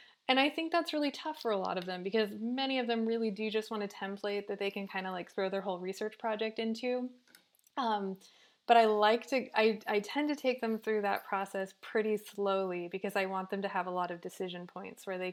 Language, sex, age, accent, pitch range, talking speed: English, female, 20-39, American, 185-220 Hz, 245 wpm